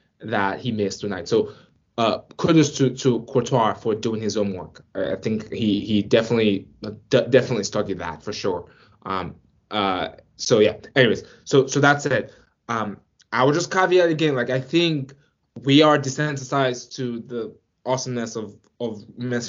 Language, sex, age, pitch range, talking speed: English, male, 20-39, 110-140 Hz, 165 wpm